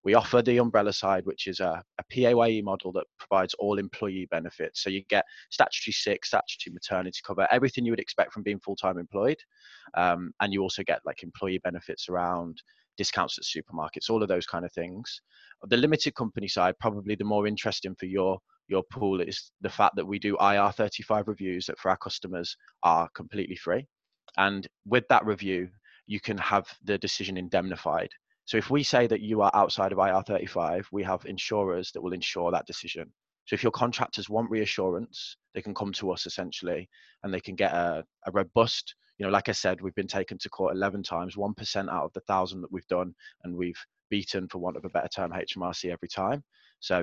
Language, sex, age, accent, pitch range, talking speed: English, male, 20-39, British, 90-105 Hz, 200 wpm